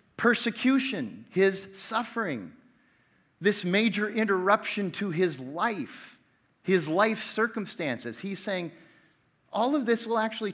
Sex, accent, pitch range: male, American, 155-215 Hz